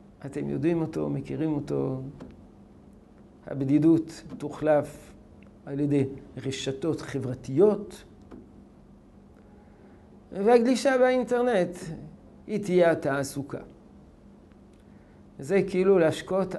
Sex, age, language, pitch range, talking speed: male, 50-69, Hebrew, 140-200 Hz, 70 wpm